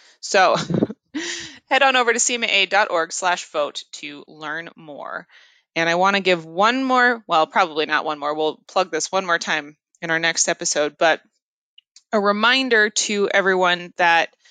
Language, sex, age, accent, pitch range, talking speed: English, female, 20-39, American, 180-215 Hz, 160 wpm